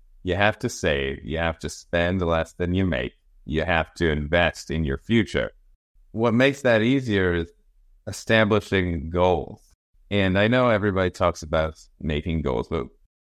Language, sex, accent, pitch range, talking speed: English, male, American, 80-100 Hz, 160 wpm